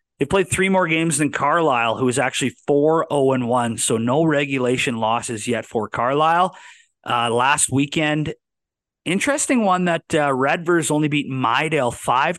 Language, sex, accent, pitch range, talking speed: English, male, American, 120-155 Hz, 155 wpm